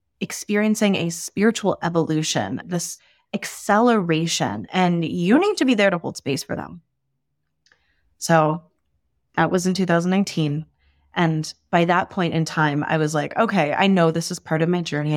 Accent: American